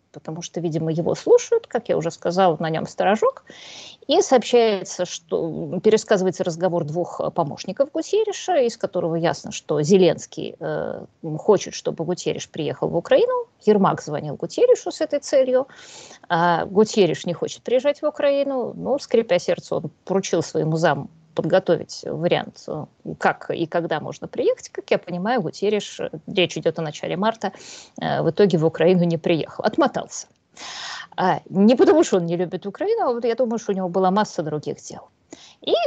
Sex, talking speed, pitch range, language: female, 155 wpm, 170-255 Hz, Russian